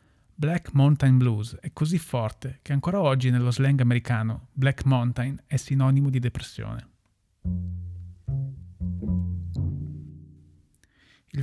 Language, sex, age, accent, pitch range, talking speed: Italian, male, 30-49, native, 110-145 Hz, 100 wpm